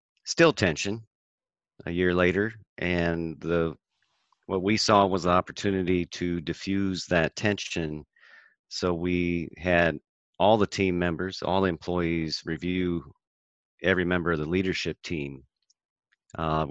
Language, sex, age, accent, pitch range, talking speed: English, male, 40-59, American, 80-100 Hz, 125 wpm